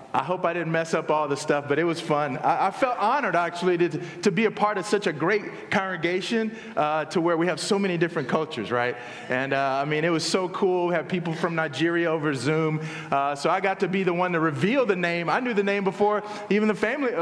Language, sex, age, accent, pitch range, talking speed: English, male, 30-49, American, 155-210 Hz, 255 wpm